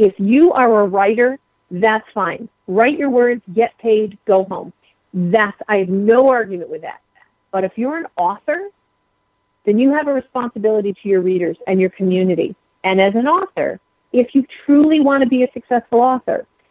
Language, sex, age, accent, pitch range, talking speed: English, female, 40-59, American, 190-245 Hz, 180 wpm